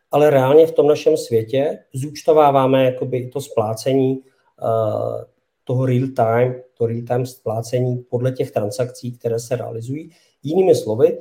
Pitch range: 125-160 Hz